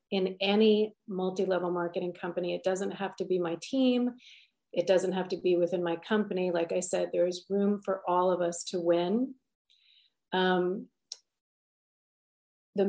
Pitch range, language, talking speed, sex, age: 185-275 Hz, English, 160 wpm, female, 40-59